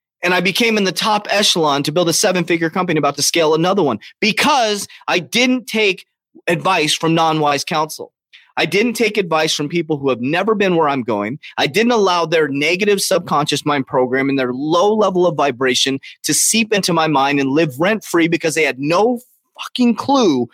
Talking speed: 195 wpm